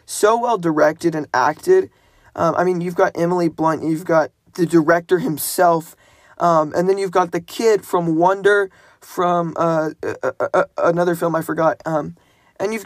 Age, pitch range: 20-39, 155-190 Hz